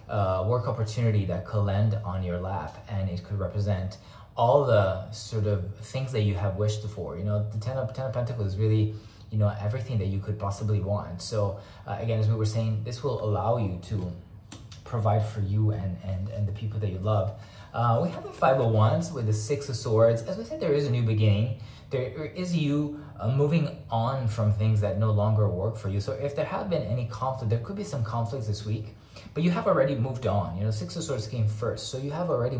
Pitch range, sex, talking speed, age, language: 105-125 Hz, male, 235 wpm, 20-39, English